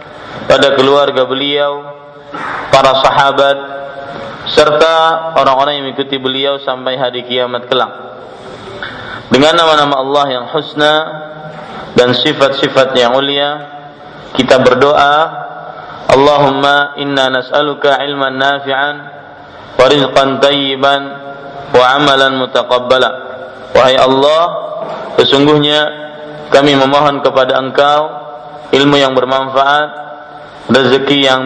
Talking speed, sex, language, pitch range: 90 wpm, male, Malay, 130-150 Hz